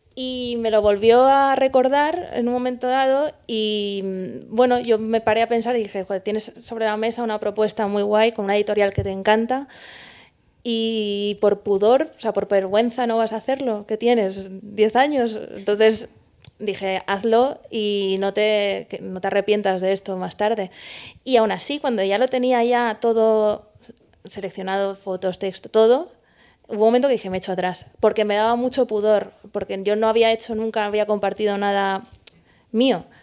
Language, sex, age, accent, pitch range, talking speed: Spanish, female, 20-39, Spanish, 200-240 Hz, 175 wpm